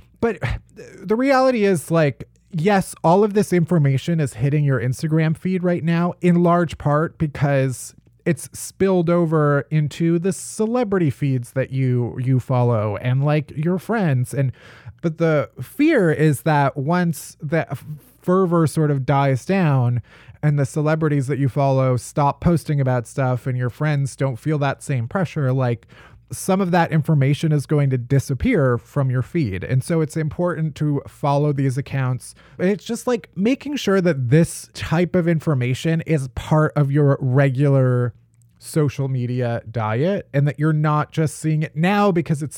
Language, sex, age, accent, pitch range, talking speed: English, male, 20-39, American, 130-160 Hz, 160 wpm